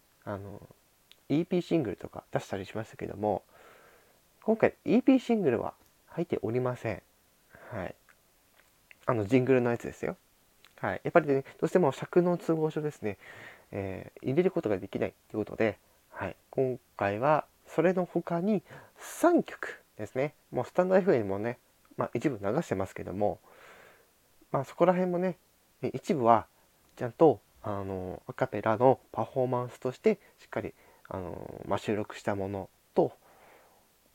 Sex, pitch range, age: male, 100-155 Hz, 20-39